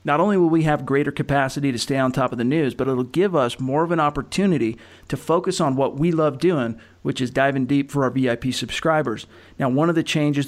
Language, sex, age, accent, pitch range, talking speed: English, male, 40-59, American, 125-145 Hz, 240 wpm